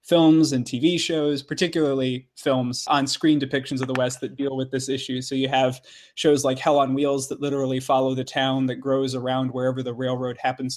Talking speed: 205 wpm